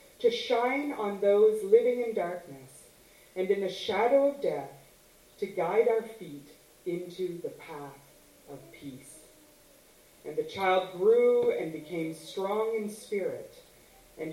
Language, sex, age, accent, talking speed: English, female, 30-49, American, 135 wpm